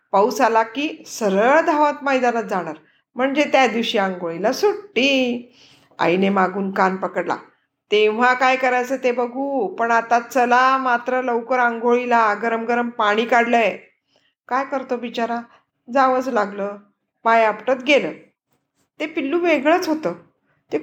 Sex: female